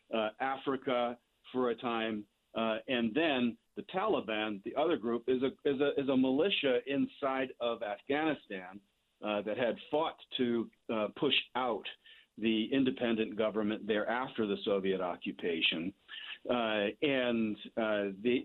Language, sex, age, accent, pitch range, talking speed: English, male, 50-69, American, 105-130 Hz, 140 wpm